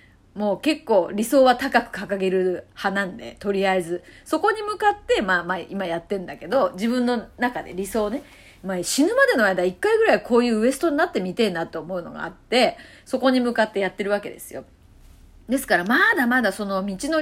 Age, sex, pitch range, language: 30-49, female, 195-320 Hz, Japanese